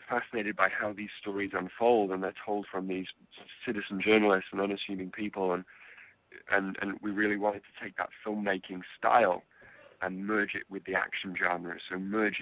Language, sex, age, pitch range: English, male, 20-39, 95-105 Hz